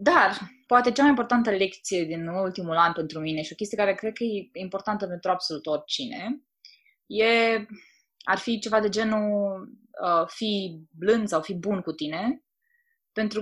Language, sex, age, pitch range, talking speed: Romanian, female, 20-39, 165-220 Hz, 165 wpm